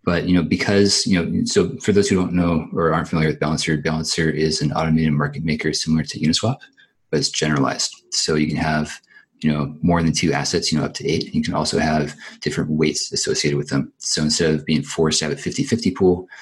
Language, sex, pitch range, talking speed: English, male, 75-85 Hz, 230 wpm